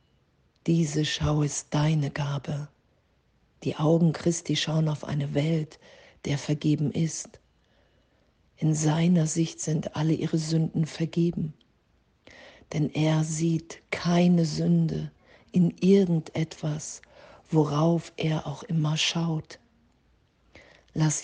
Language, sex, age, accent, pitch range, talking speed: German, female, 50-69, German, 150-160 Hz, 100 wpm